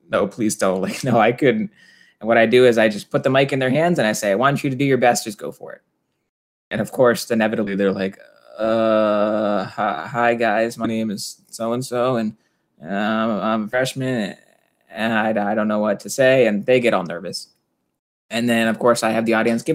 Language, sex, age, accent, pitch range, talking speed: English, male, 20-39, American, 115-145 Hz, 225 wpm